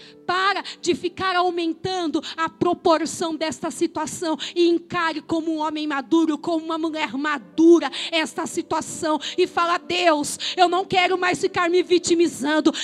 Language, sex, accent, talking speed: Portuguese, female, Brazilian, 140 wpm